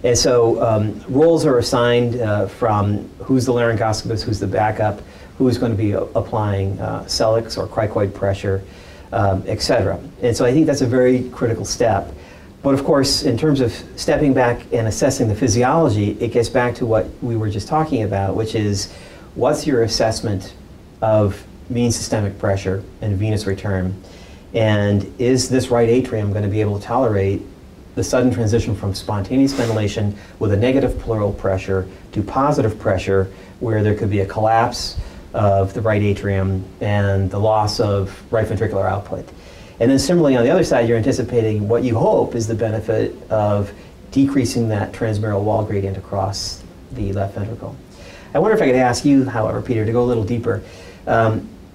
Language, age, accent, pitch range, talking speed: English, 40-59, American, 95-120 Hz, 175 wpm